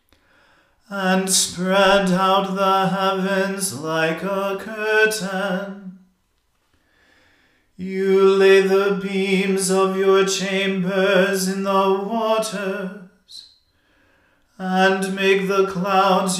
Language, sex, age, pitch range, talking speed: English, male, 40-59, 190-195 Hz, 80 wpm